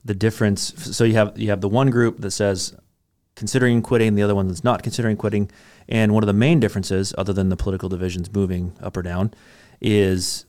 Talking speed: 210 wpm